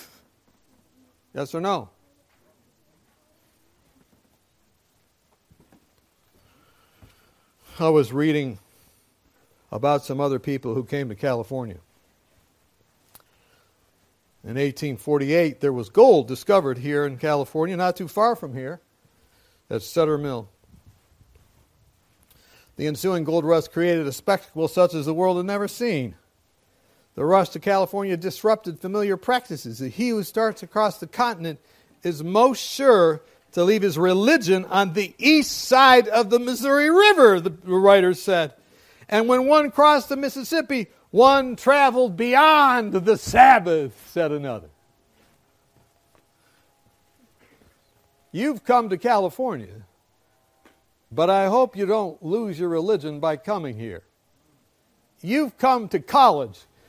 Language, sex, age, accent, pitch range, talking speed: English, male, 60-79, American, 135-220 Hz, 115 wpm